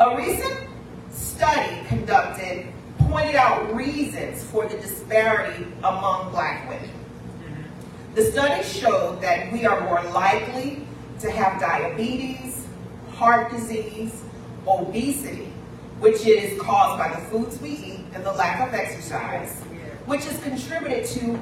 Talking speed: 125 wpm